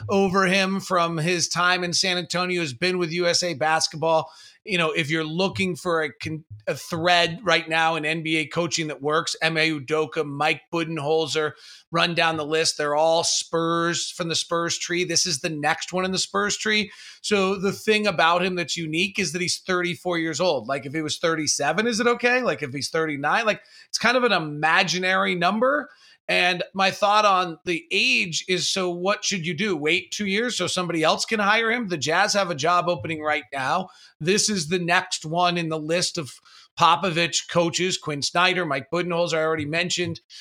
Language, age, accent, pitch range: English, 30-49, American, 160-195 Hz